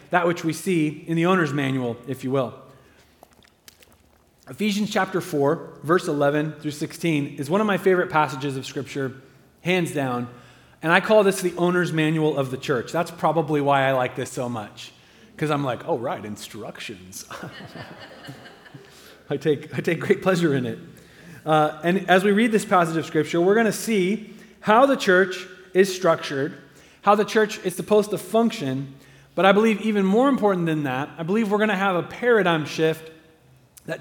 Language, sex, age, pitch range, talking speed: English, male, 30-49, 150-195 Hz, 180 wpm